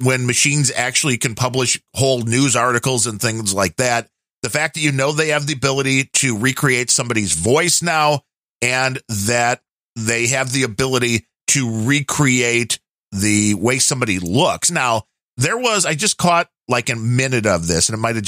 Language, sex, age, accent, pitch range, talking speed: English, male, 40-59, American, 115-145 Hz, 170 wpm